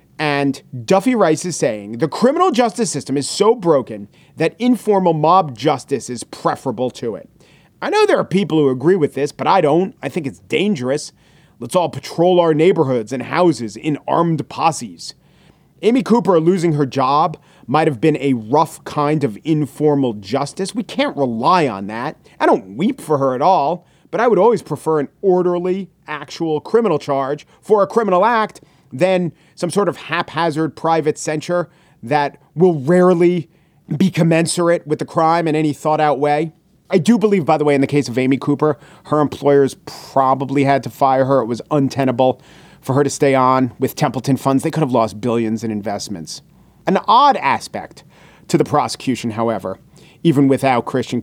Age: 40-59